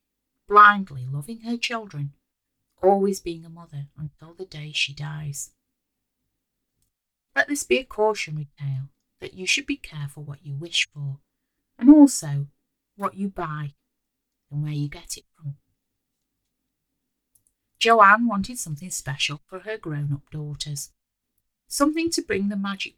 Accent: British